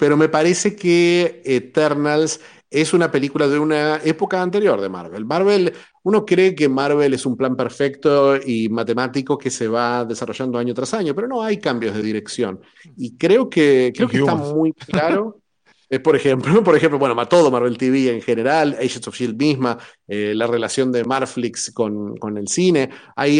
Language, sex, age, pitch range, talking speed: Spanish, male, 40-59, 120-160 Hz, 180 wpm